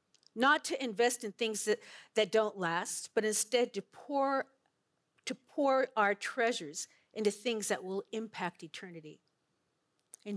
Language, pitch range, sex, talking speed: English, 185-240 Hz, female, 140 wpm